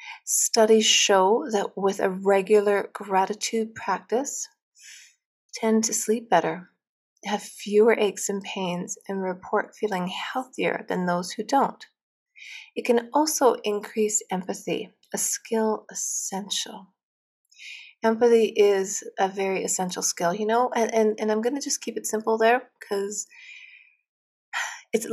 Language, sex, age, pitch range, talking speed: English, female, 30-49, 190-235 Hz, 130 wpm